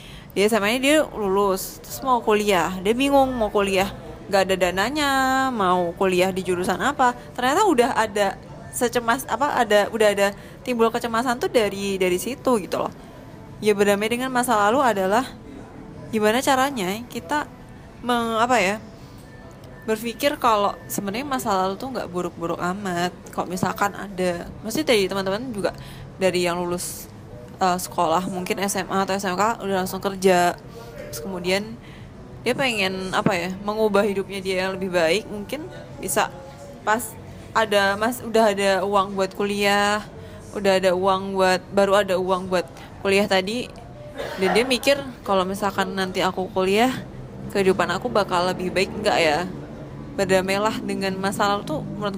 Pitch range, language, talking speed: 185-225 Hz, Indonesian, 145 wpm